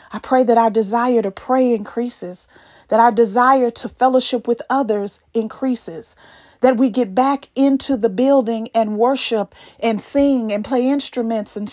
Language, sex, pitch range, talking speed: English, female, 215-255 Hz, 160 wpm